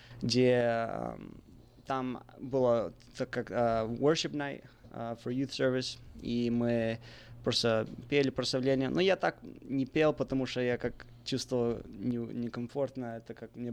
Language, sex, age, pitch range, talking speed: Russian, male, 20-39, 120-135 Hz, 125 wpm